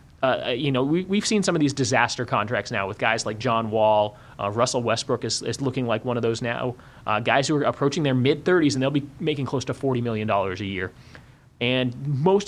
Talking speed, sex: 225 wpm, male